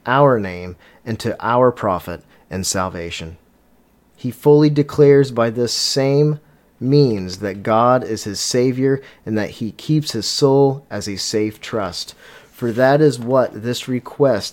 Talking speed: 150 wpm